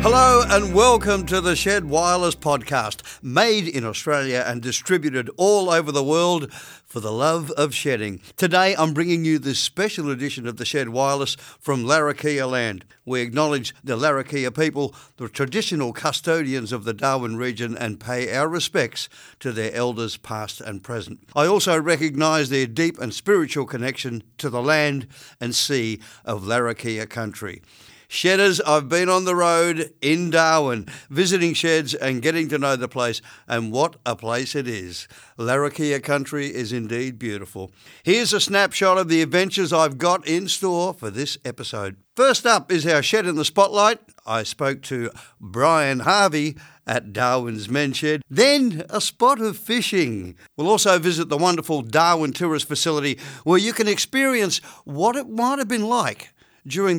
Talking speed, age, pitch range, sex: 165 wpm, 50-69, 125-175 Hz, male